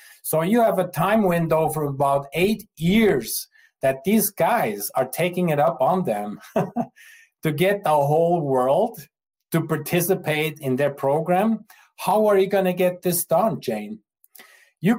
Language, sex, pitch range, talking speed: English, male, 140-185 Hz, 155 wpm